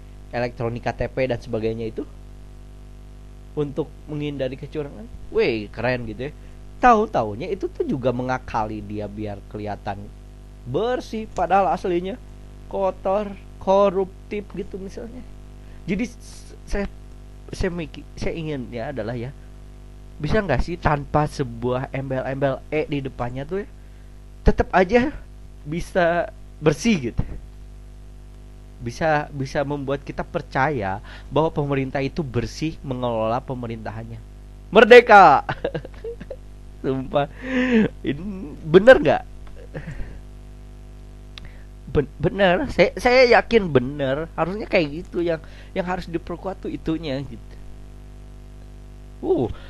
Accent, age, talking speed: native, 20-39, 100 wpm